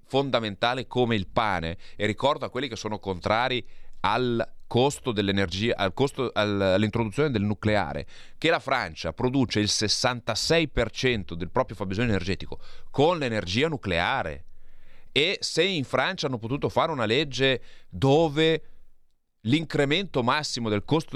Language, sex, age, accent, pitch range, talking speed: Italian, male, 30-49, native, 95-145 Hz, 130 wpm